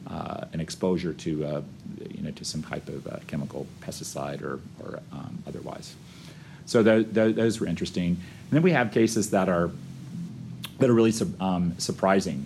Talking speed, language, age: 180 wpm, English, 40-59